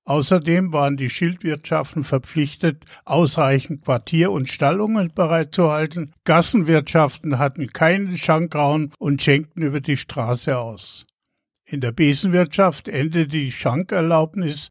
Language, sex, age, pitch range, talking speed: German, male, 50-69, 135-175 Hz, 105 wpm